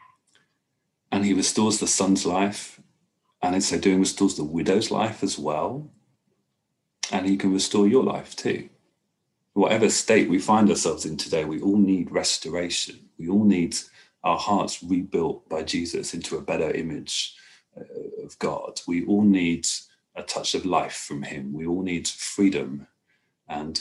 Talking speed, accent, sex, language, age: 155 wpm, British, male, English, 40-59